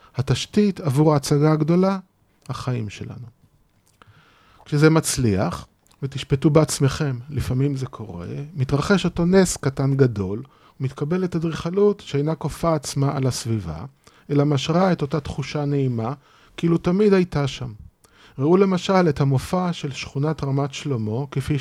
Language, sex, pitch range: Hebrew, male, 130-165 Hz